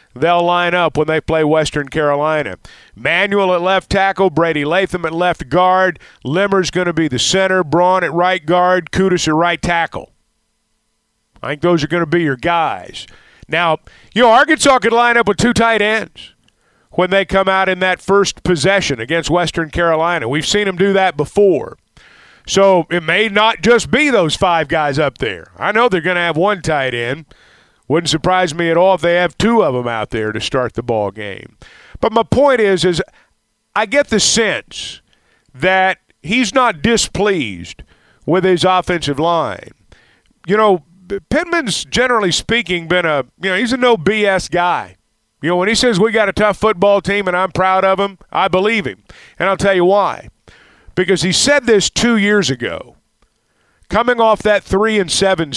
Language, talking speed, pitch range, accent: English, 190 wpm, 160-200 Hz, American